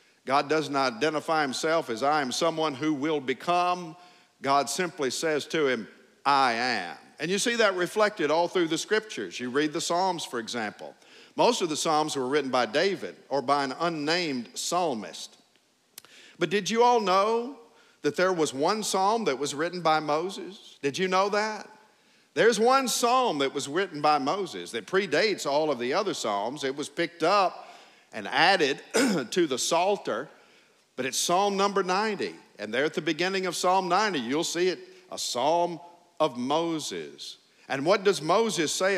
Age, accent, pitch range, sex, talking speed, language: 50-69, American, 150-200 Hz, male, 175 wpm, English